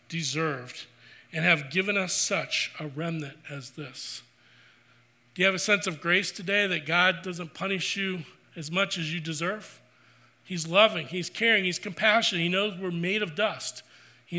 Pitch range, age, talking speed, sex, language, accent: 160-195 Hz, 40-59, 170 wpm, male, English, American